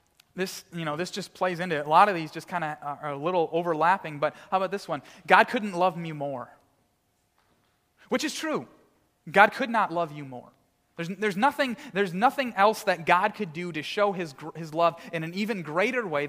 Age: 30-49